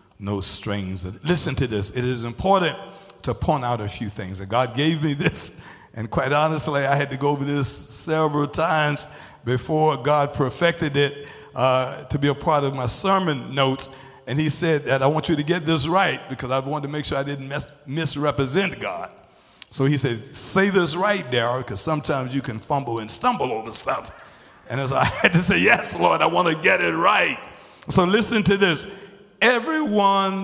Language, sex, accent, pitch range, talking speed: English, male, American, 135-200 Hz, 195 wpm